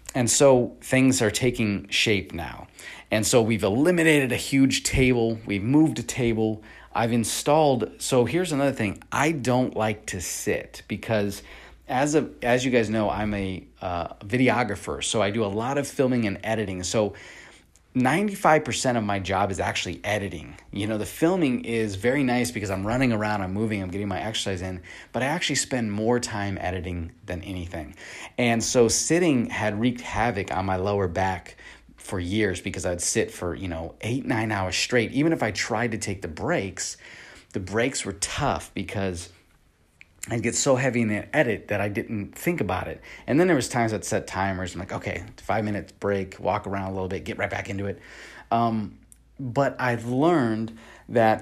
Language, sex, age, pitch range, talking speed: English, male, 30-49, 95-120 Hz, 185 wpm